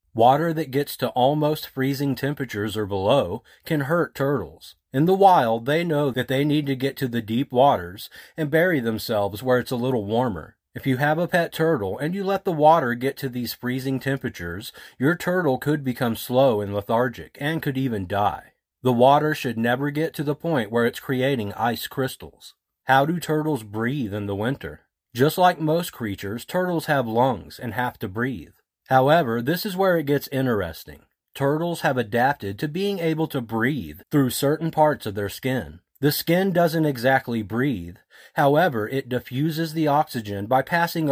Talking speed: 180 wpm